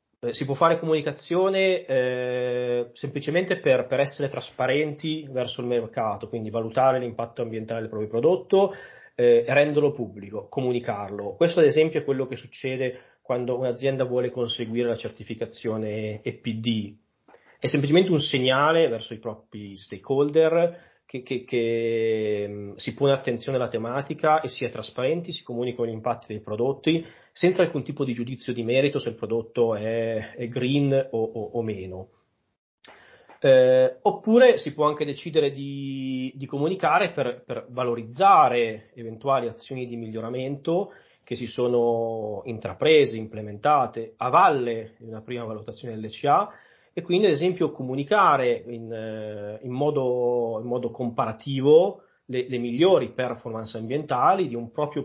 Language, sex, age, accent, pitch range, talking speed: Italian, male, 30-49, native, 115-145 Hz, 140 wpm